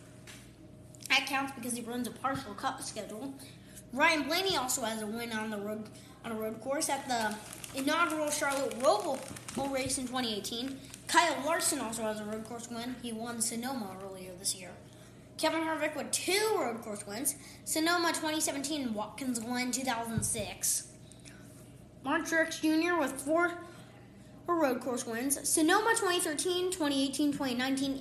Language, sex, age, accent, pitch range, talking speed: English, female, 20-39, American, 245-315 Hz, 150 wpm